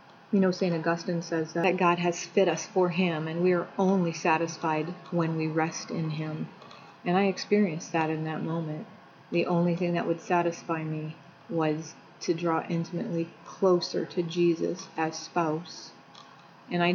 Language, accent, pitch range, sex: English, American, 165-195 Hz, female